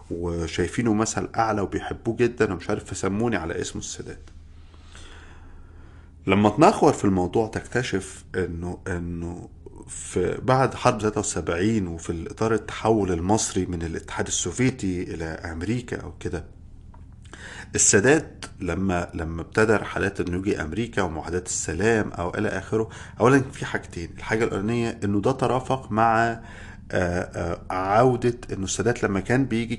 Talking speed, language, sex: 120 wpm, Arabic, male